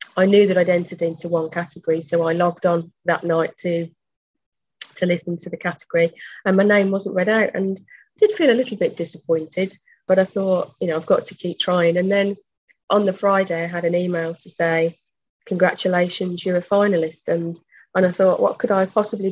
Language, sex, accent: English, female, British